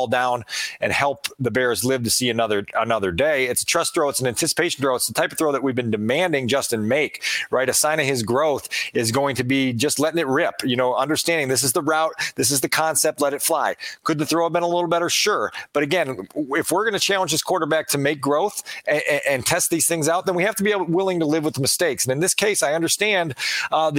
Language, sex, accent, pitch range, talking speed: English, male, American, 135-165 Hz, 265 wpm